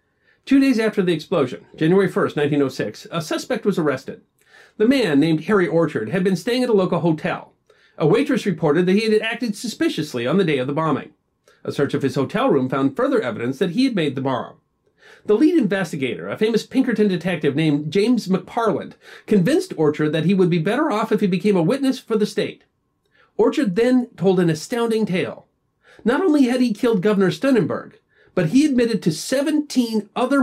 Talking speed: 195 wpm